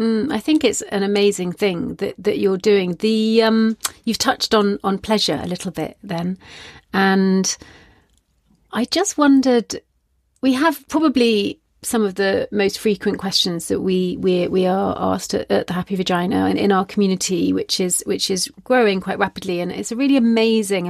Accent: British